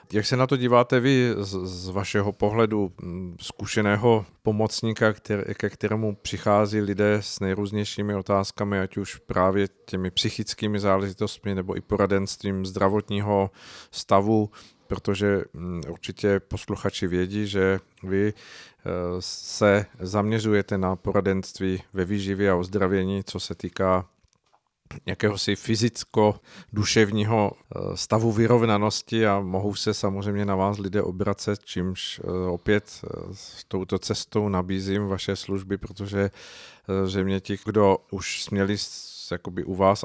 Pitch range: 95-105 Hz